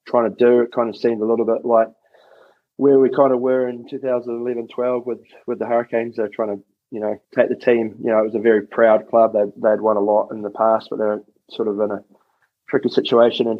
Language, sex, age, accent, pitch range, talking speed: English, male, 20-39, Australian, 105-120 Hz, 245 wpm